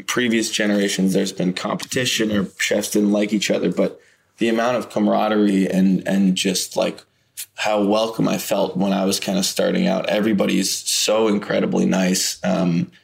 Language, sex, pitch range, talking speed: English, male, 95-110 Hz, 165 wpm